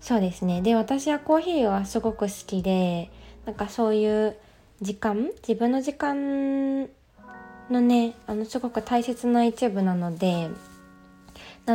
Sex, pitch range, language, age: female, 190-245 Hz, Japanese, 20-39